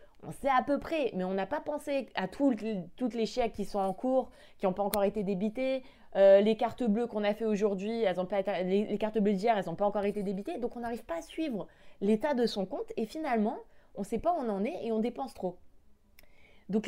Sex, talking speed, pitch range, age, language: female, 265 wpm, 190-245 Hz, 20-39, French